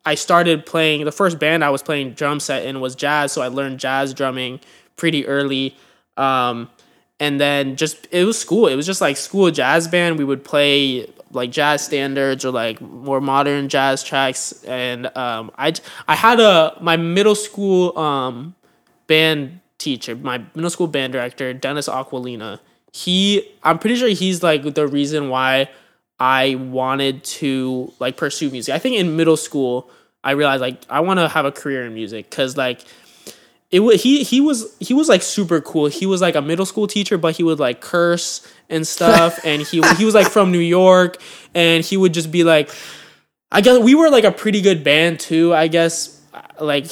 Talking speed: 190 wpm